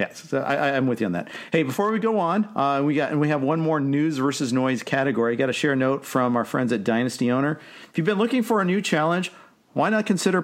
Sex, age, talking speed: male, 50-69, 270 wpm